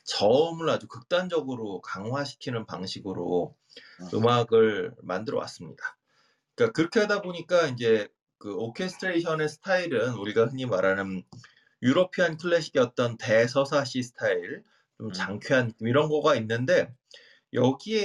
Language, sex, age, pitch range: Korean, male, 30-49, 115-165 Hz